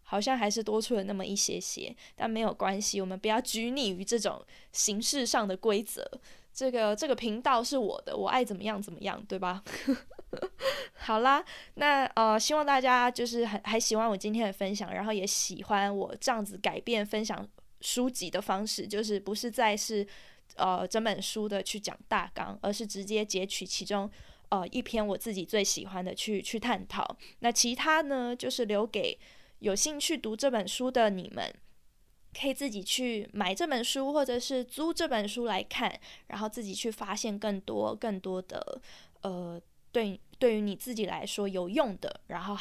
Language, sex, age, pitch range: Chinese, female, 20-39, 200-255 Hz